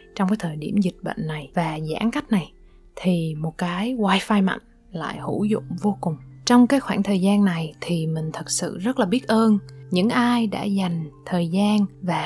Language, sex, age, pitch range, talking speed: Vietnamese, female, 20-39, 175-220 Hz, 205 wpm